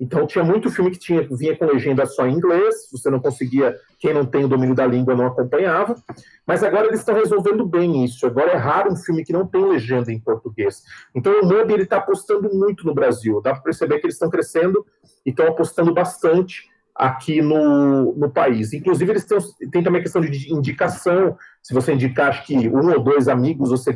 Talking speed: 210 wpm